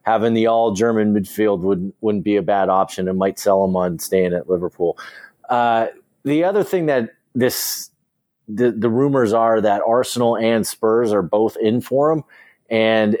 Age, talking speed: 30-49, 175 wpm